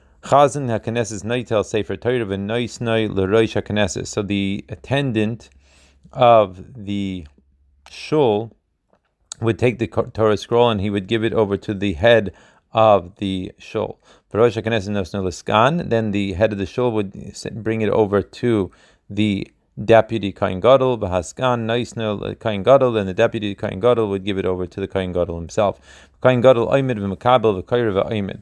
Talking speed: 110 wpm